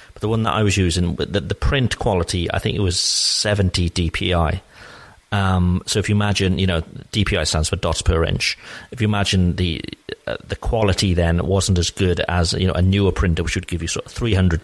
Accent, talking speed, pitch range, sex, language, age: British, 215 wpm, 85-105 Hz, male, English, 40-59